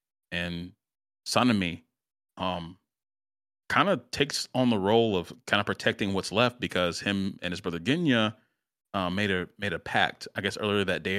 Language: English